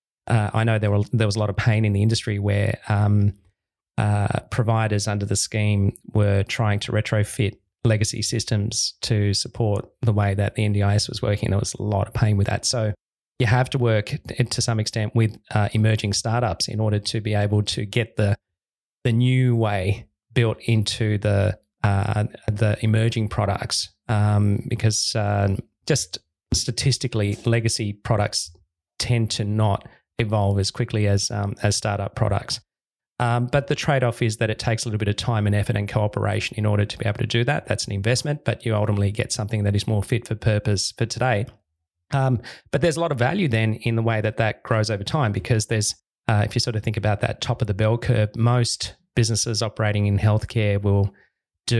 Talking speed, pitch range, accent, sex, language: 195 wpm, 105-115 Hz, Australian, male, English